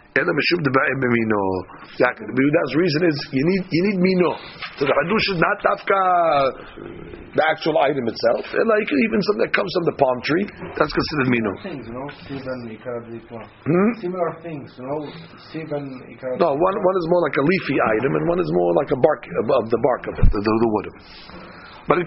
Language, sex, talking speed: English, male, 180 wpm